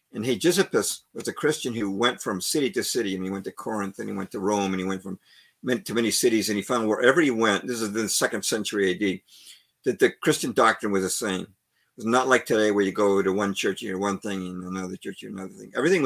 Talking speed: 265 wpm